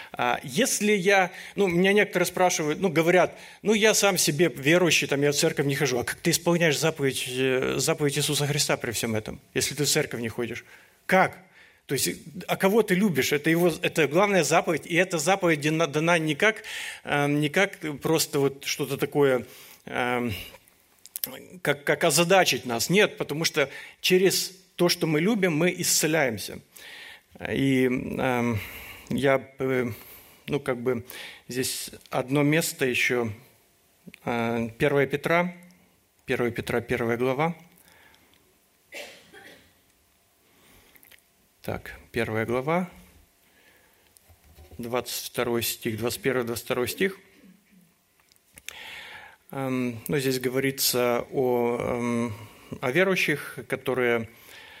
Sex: male